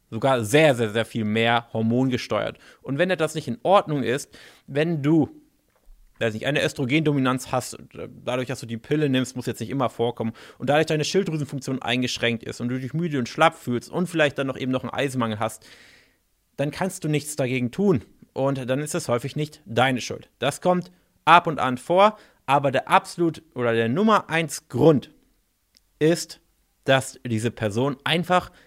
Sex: male